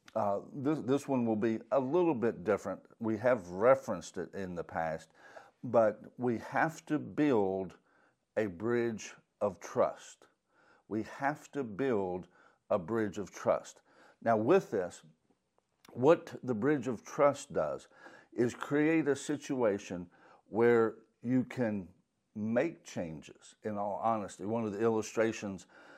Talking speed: 135 wpm